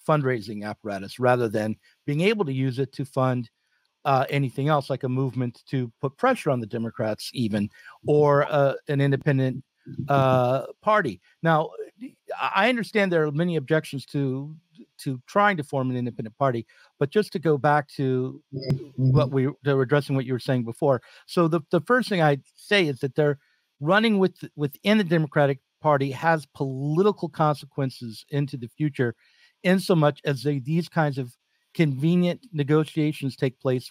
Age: 50-69